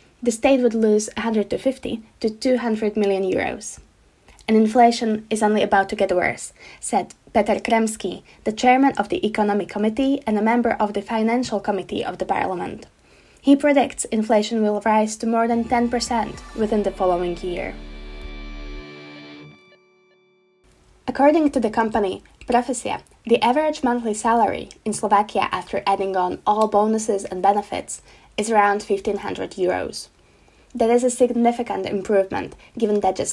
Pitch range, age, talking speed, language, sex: 200-235 Hz, 10-29, 140 wpm, Slovak, female